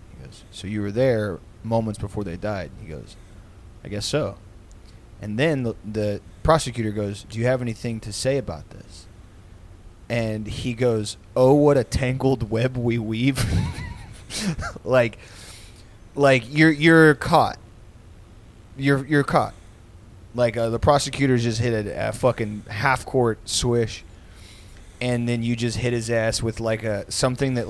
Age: 20-39